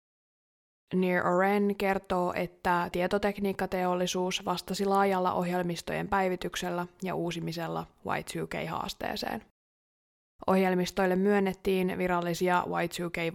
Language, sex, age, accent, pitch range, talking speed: Finnish, female, 20-39, native, 175-195 Hz, 80 wpm